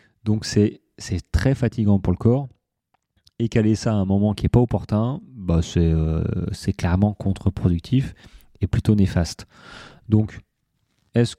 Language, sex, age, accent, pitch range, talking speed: French, male, 30-49, French, 95-115 Hz, 140 wpm